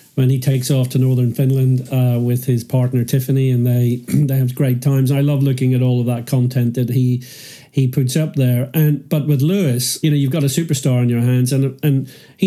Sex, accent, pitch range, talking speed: male, British, 125-140 Hz, 230 wpm